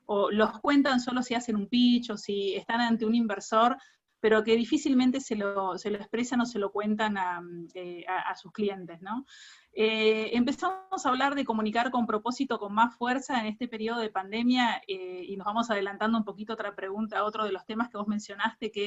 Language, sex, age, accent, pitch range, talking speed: Spanish, female, 30-49, Argentinian, 205-250 Hz, 205 wpm